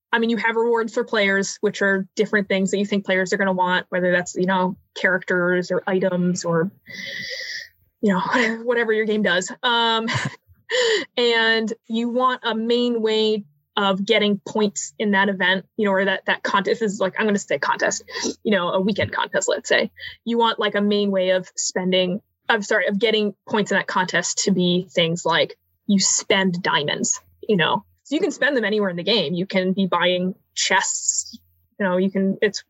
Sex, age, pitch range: female, 20-39, 185-225 Hz